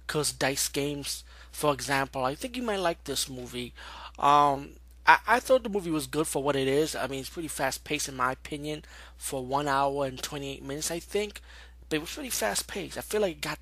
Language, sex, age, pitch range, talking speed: English, male, 20-39, 125-155 Hz, 220 wpm